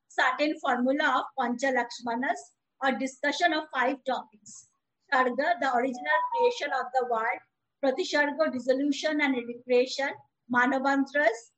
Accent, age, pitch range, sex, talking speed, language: Indian, 50-69, 255-310 Hz, female, 115 wpm, English